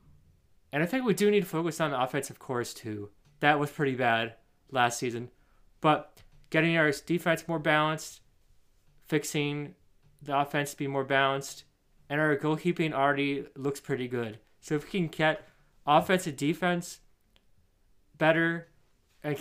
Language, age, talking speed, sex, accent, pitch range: English, 20-39, 150 wpm, male, American, 130-155 Hz